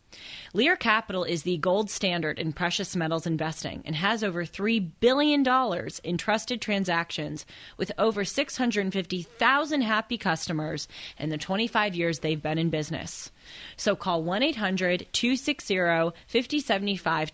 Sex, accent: female, American